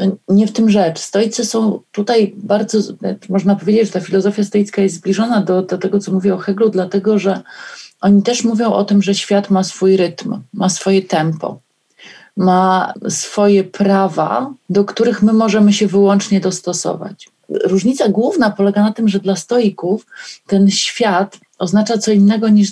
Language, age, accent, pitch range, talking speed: Polish, 40-59, native, 185-210 Hz, 160 wpm